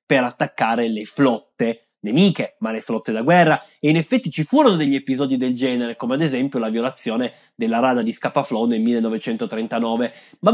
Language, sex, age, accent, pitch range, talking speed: Italian, male, 20-39, native, 130-215 Hz, 175 wpm